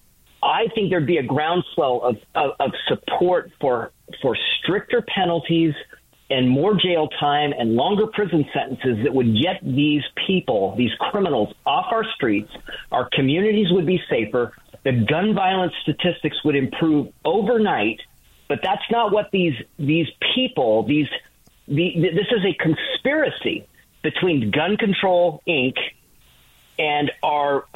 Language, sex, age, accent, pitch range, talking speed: English, male, 40-59, American, 130-185 Hz, 135 wpm